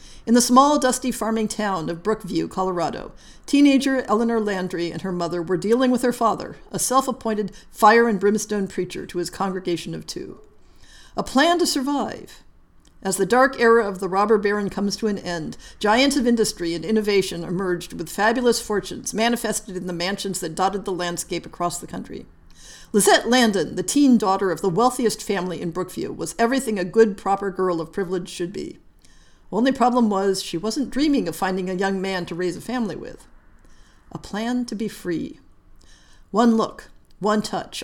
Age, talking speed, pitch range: 50-69, 175 wpm, 185-225 Hz